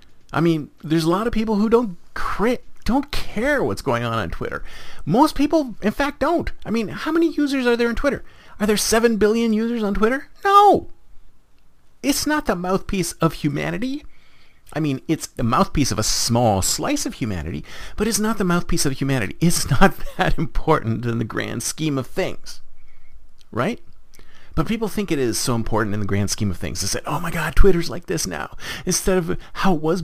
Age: 40-59